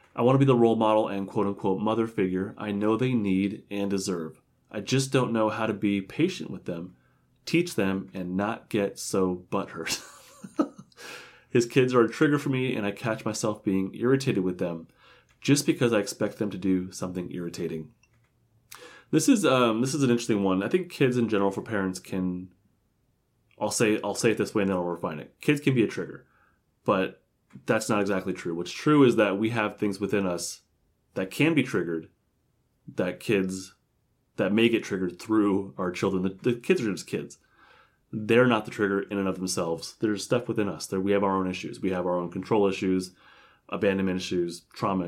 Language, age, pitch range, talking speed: English, 30-49, 95-115 Hz, 200 wpm